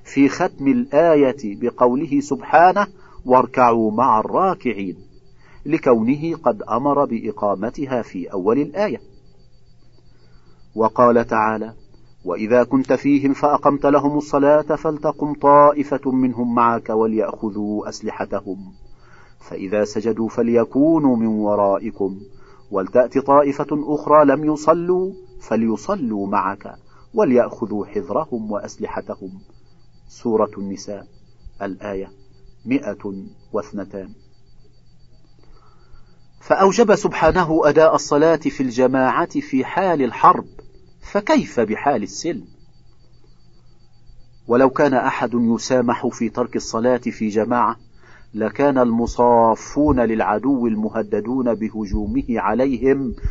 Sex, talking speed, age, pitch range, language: male, 85 wpm, 40-59, 110-145 Hz, Arabic